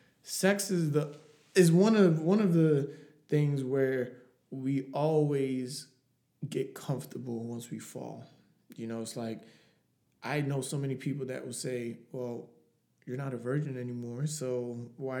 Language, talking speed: English, 150 wpm